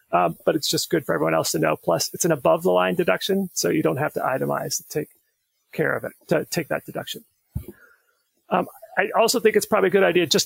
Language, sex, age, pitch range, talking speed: English, male, 40-59, 150-210 Hz, 230 wpm